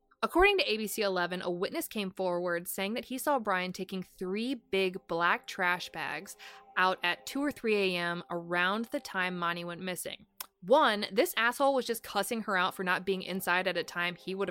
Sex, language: female, English